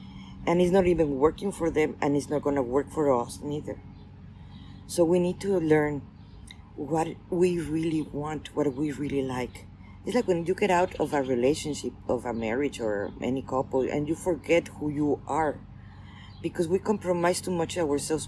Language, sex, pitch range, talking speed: English, female, 115-155 Hz, 180 wpm